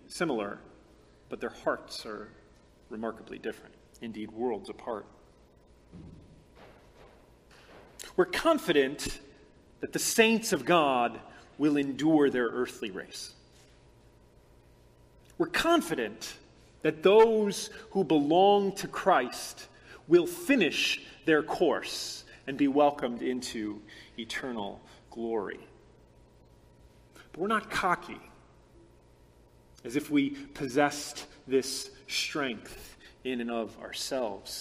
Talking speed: 95 wpm